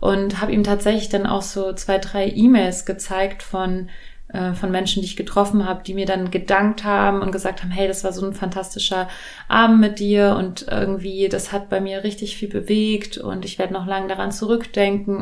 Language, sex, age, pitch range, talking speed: German, female, 30-49, 190-210 Hz, 205 wpm